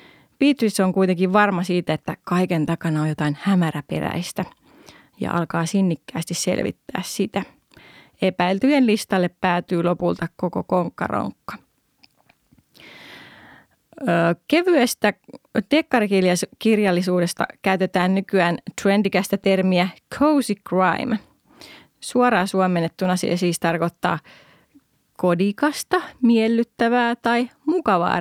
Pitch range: 175-225 Hz